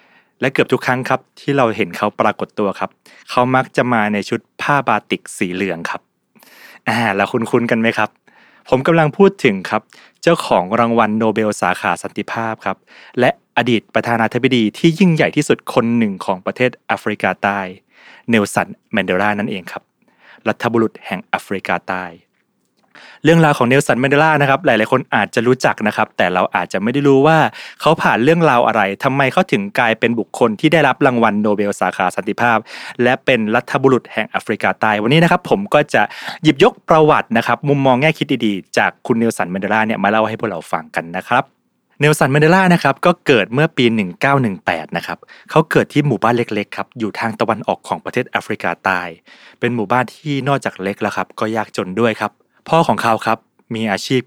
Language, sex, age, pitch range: Thai, male, 20-39, 105-140 Hz